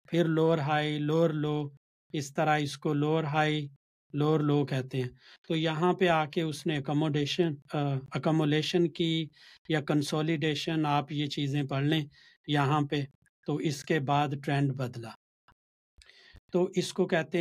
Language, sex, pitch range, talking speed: Urdu, male, 140-155 Hz, 155 wpm